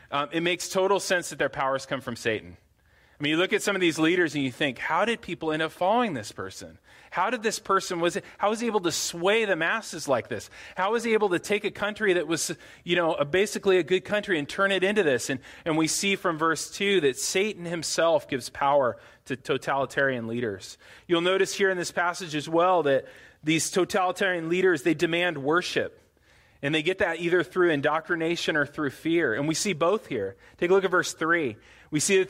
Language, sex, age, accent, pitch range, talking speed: English, male, 30-49, American, 145-185 Hz, 230 wpm